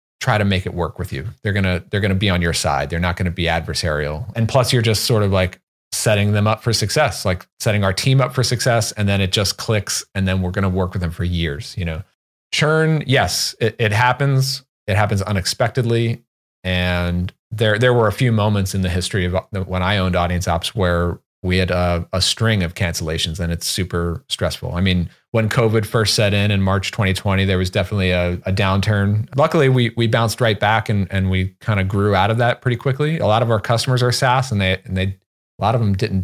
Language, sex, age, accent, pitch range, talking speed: English, male, 40-59, American, 95-115 Hz, 240 wpm